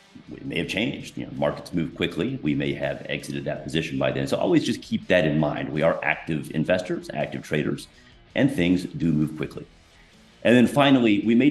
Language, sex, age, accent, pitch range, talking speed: English, male, 40-59, American, 75-110 Hz, 200 wpm